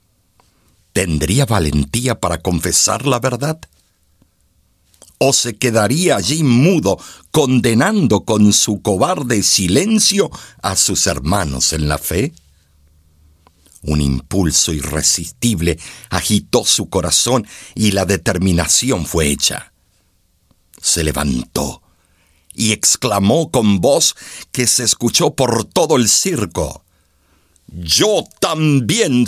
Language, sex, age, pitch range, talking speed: Spanish, male, 60-79, 80-120 Hz, 100 wpm